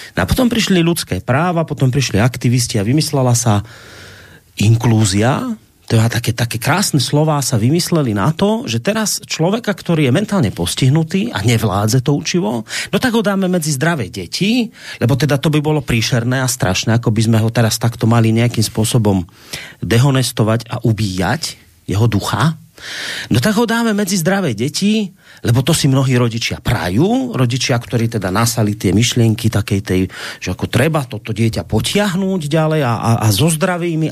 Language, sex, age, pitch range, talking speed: Slovak, male, 40-59, 110-170 Hz, 165 wpm